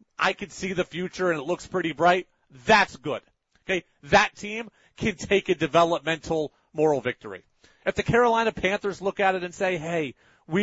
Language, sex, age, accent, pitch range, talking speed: English, male, 40-59, American, 180-210 Hz, 180 wpm